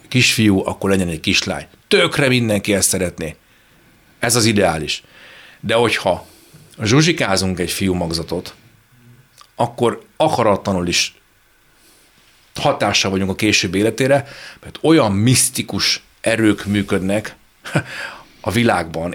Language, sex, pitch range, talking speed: Hungarian, male, 90-120 Hz, 105 wpm